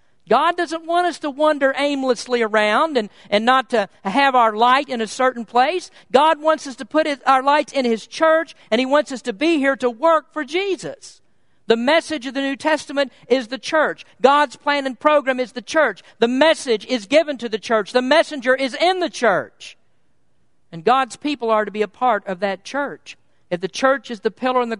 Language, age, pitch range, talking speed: English, 50-69, 225-290 Hz, 215 wpm